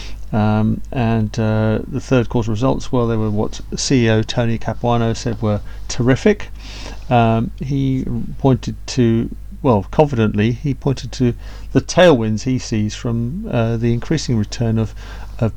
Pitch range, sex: 105-125 Hz, male